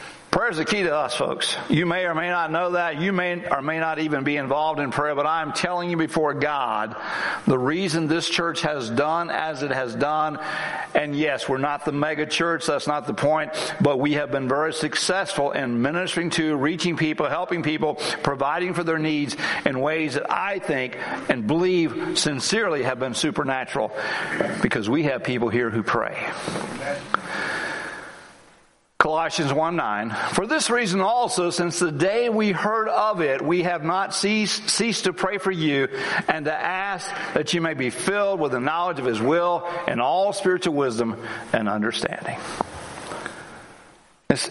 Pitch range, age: 150-195 Hz, 60-79